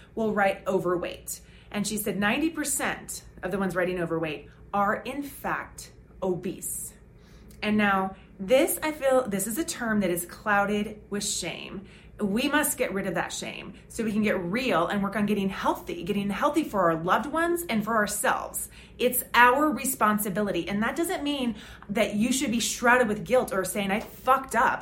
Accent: American